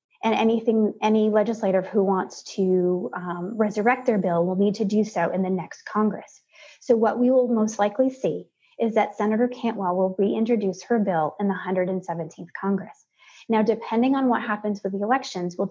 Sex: female